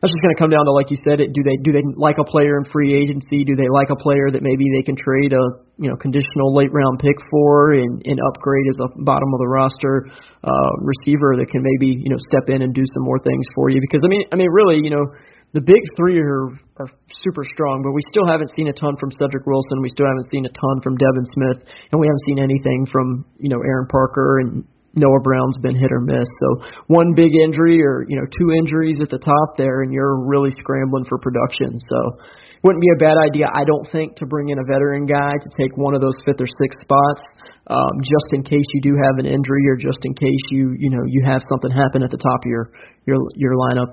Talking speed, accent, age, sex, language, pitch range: 255 wpm, American, 30-49, male, English, 130-145 Hz